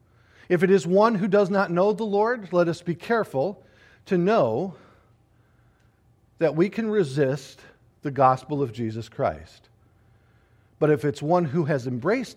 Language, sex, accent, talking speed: English, male, American, 155 wpm